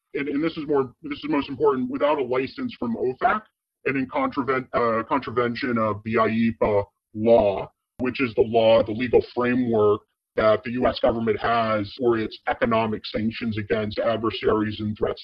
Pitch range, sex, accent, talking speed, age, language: 115-170 Hz, female, American, 170 wpm, 40-59, English